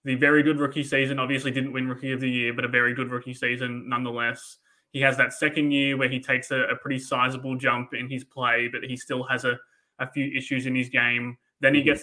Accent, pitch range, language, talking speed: Australian, 125-135 Hz, English, 245 wpm